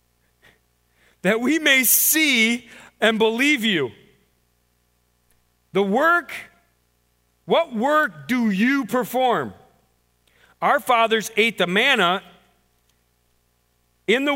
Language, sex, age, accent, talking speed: English, male, 40-59, American, 90 wpm